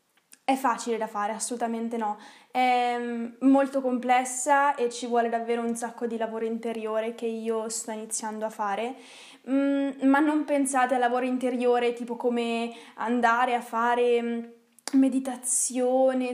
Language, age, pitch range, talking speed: Italian, 20-39, 230-255 Hz, 130 wpm